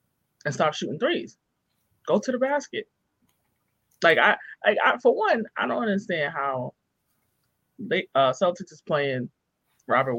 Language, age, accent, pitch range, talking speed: English, 20-39, American, 140-200 Hz, 140 wpm